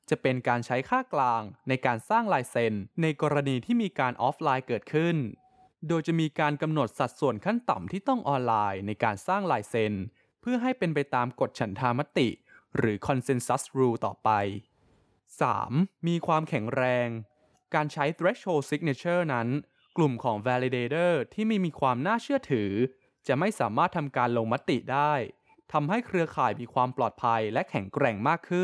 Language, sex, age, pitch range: Thai, male, 20-39, 120-175 Hz